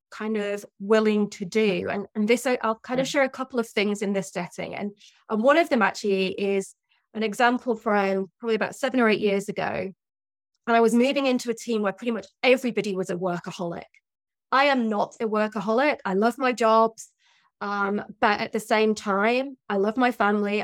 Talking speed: 200 wpm